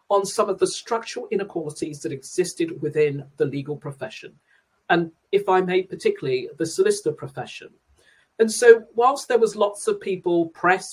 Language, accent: English, British